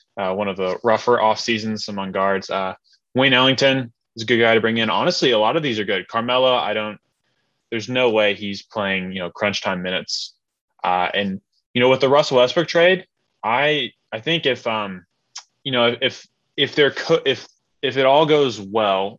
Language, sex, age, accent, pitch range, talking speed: English, male, 20-39, American, 100-125 Hz, 205 wpm